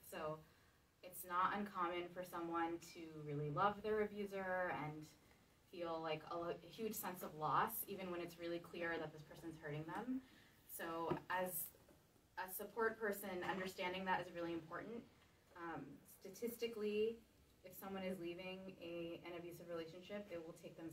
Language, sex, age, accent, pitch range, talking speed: English, female, 20-39, American, 155-205 Hz, 150 wpm